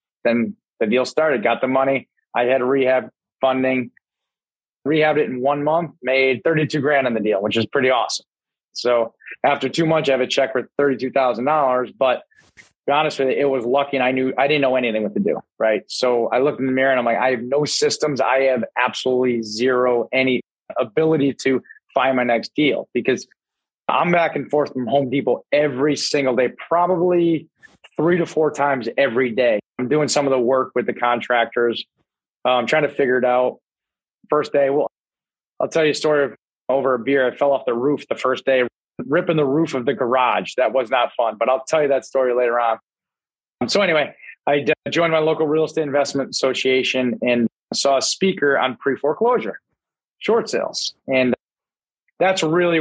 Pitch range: 125-145 Hz